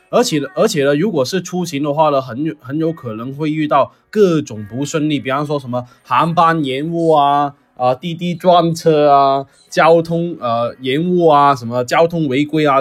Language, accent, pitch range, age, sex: Chinese, native, 130-180 Hz, 20-39, male